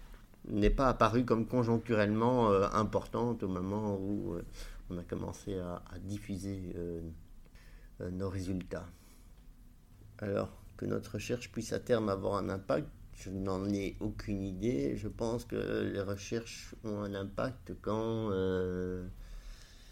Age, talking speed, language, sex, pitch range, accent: 50-69, 140 wpm, French, male, 95-110 Hz, French